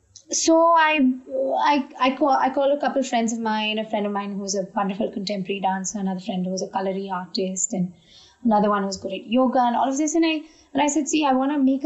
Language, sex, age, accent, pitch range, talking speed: English, female, 20-39, Indian, 195-265 Hz, 265 wpm